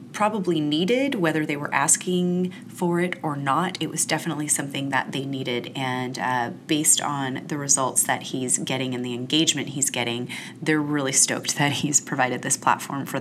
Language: English